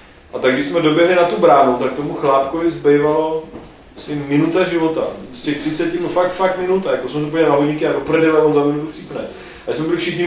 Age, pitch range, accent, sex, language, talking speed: 30-49, 120-155 Hz, native, male, Czech, 215 wpm